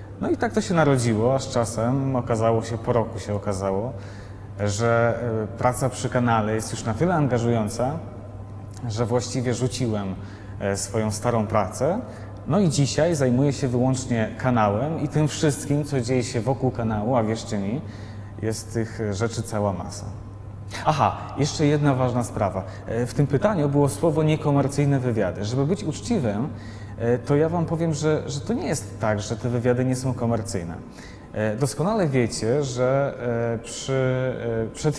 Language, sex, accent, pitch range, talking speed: Polish, male, native, 110-140 Hz, 150 wpm